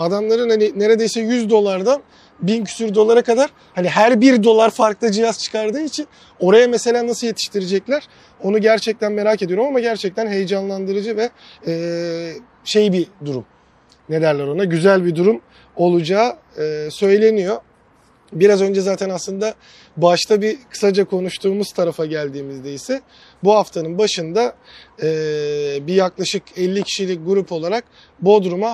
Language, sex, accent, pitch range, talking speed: Turkish, male, native, 175-220 Hz, 125 wpm